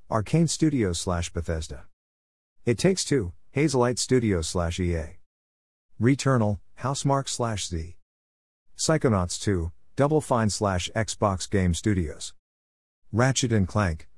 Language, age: English, 50-69